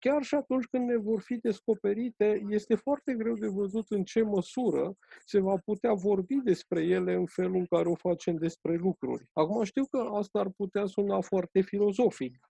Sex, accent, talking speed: male, native, 185 wpm